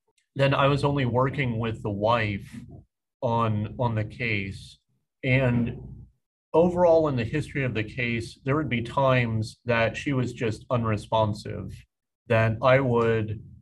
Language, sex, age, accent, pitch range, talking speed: English, male, 40-59, American, 115-130 Hz, 140 wpm